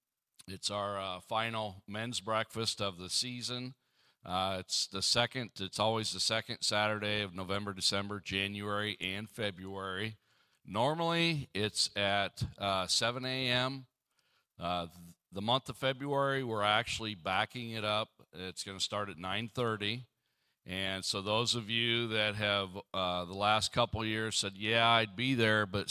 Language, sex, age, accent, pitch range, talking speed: English, male, 50-69, American, 100-125 Hz, 150 wpm